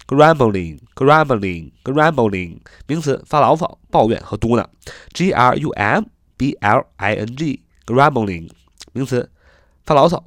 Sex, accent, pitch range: male, native, 95-135 Hz